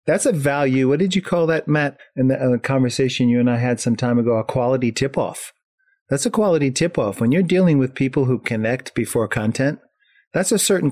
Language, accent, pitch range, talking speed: English, American, 120-190 Hz, 225 wpm